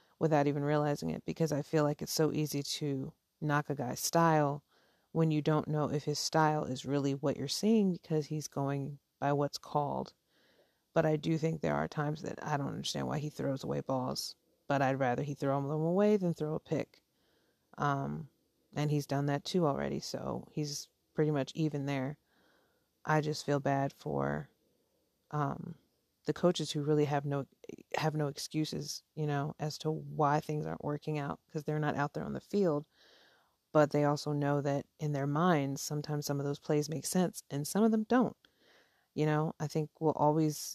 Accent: American